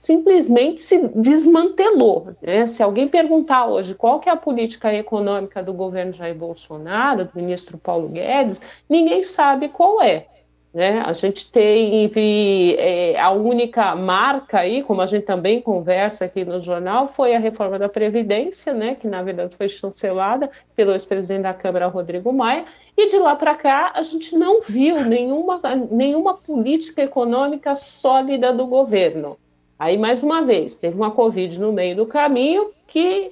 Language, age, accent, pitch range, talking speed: Portuguese, 40-59, Brazilian, 195-290 Hz, 160 wpm